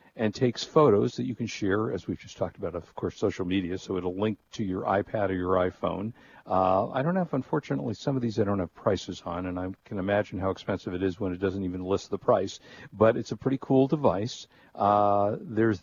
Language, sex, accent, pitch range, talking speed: English, male, American, 95-115 Hz, 230 wpm